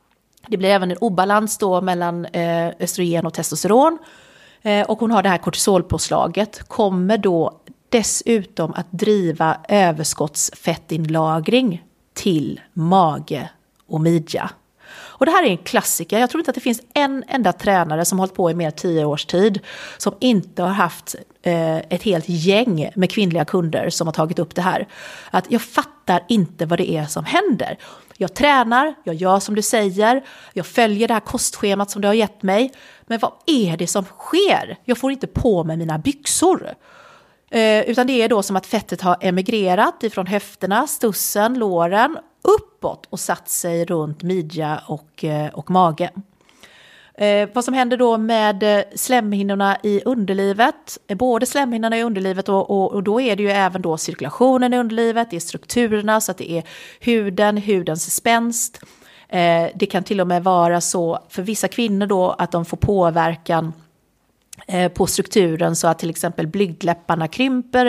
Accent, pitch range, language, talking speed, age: native, 175-230 Hz, Swedish, 165 wpm, 30-49